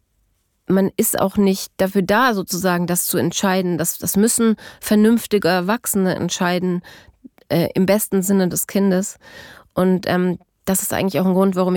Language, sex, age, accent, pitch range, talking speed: German, female, 30-49, German, 185-215 Hz, 160 wpm